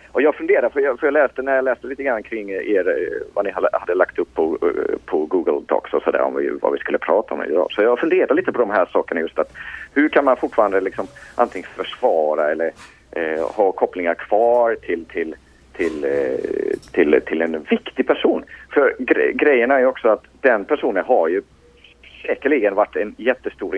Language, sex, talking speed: Swedish, male, 200 wpm